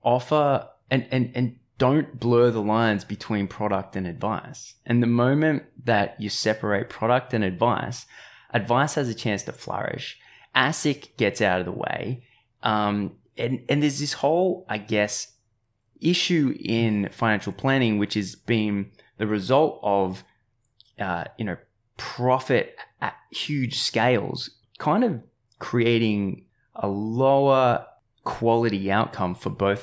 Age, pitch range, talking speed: 20-39, 100-125 Hz, 135 wpm